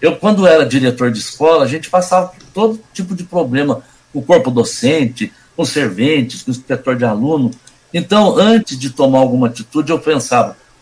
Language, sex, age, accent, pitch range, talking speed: Portuguese, male, 60-79, Brazilian, 130-185 Hz, 185 wpm